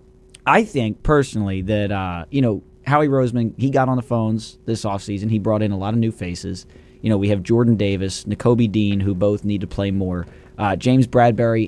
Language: English